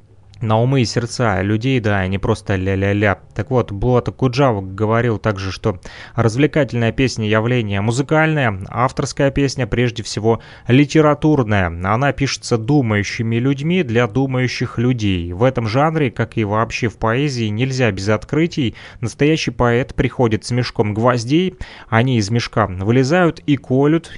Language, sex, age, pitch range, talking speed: Russian, male, 20-39, 115-150 Hz, 135 wpm